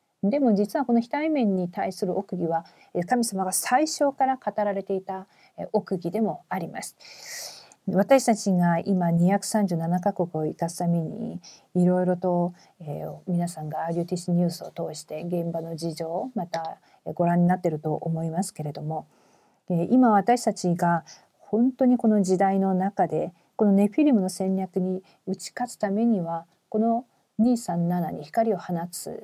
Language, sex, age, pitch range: Korean, female, 40-59, 175-220 Hz